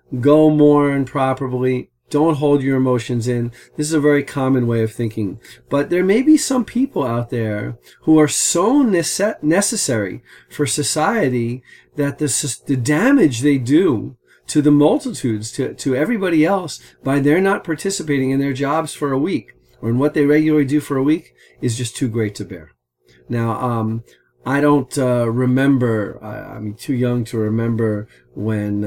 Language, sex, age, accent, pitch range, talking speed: English, male, 40-59, American, 115-145 Hz, 170 wpm